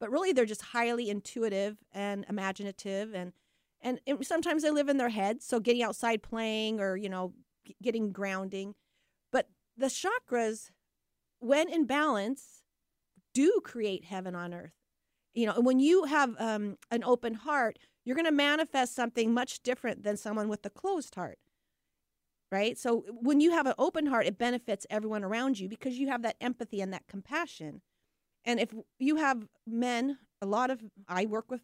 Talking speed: 175 wpm